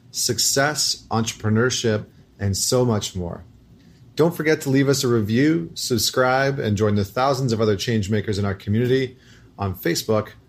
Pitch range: 110-130 Hz